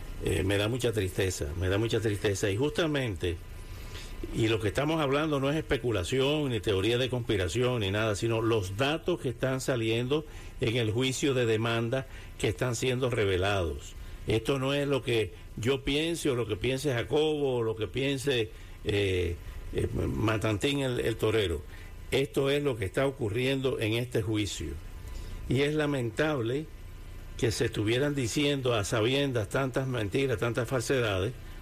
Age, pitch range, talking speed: 60-79, 100-145 Hz, 160 wpm